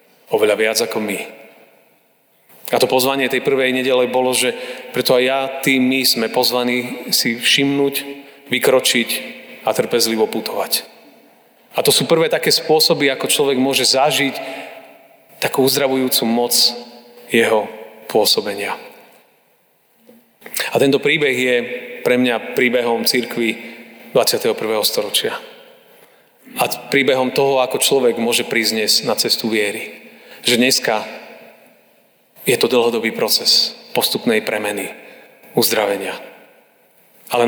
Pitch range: 120-155 Hz